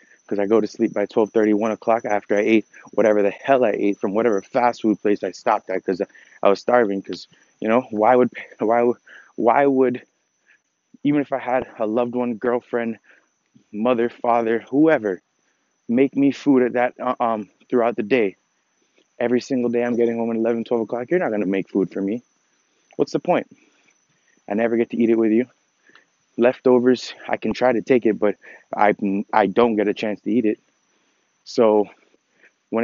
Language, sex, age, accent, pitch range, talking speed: English, male, 20-39, American, 105-125 Hz, 190 wpm